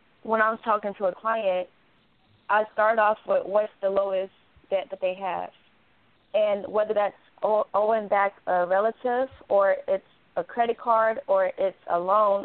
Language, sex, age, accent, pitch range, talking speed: English, female, 20-39, American, 190-225 Hz, 165 wpm